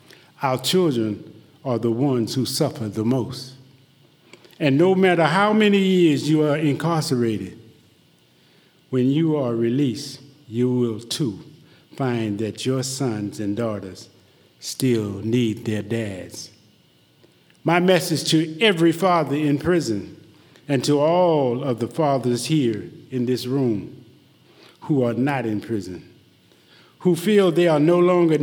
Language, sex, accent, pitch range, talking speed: English, male, American, 115-155 Hz, 135 wpm